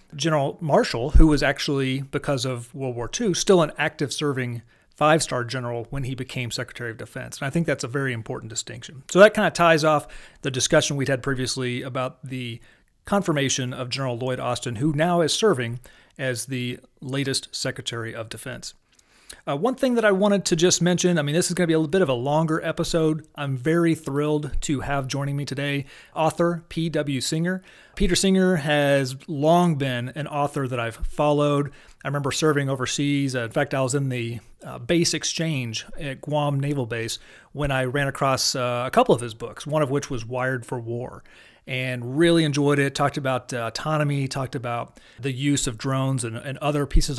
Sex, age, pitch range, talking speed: male, 30-49, 130-160 Hz, 195 wpm